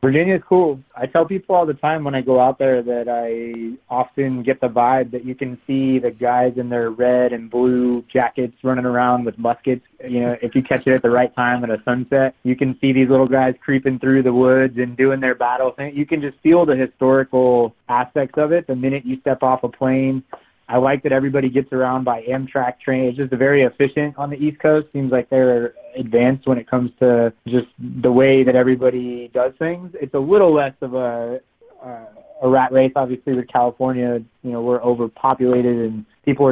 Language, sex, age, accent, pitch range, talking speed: English, male, 20-39, American, 120-135 Hz, 210 wpm